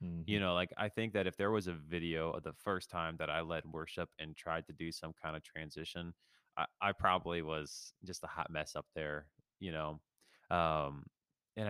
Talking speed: 210 wpm